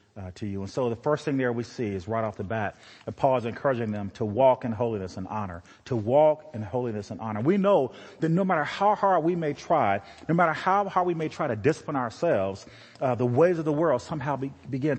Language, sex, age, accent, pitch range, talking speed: English, male, 40-59, American, 110-155 Hz, 250 wpm